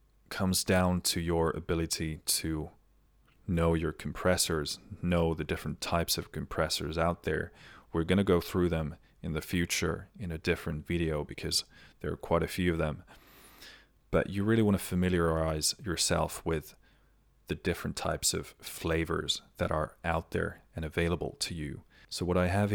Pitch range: 80-90 Hz